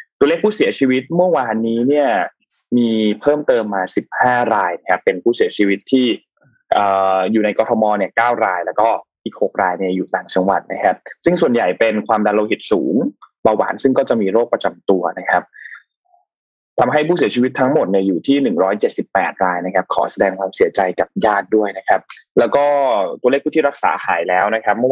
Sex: male